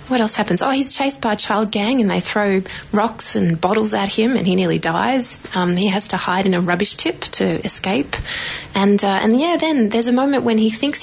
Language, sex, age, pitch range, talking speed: English, female, 20-39, 185-225 Hz, 240 wpm